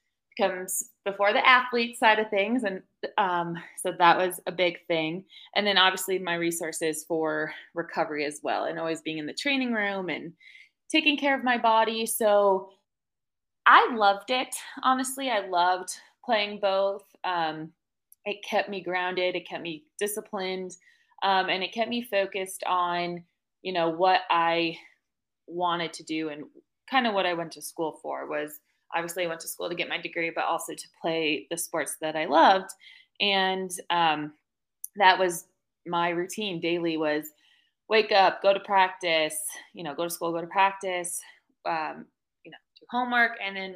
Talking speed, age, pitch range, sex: 170 wpm, 20-39, 165-205 Hz, female